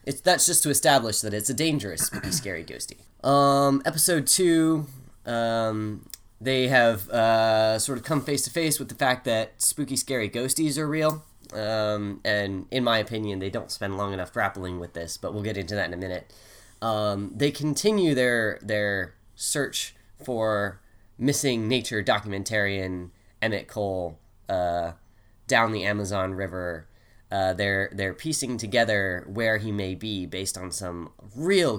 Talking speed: 155 wpm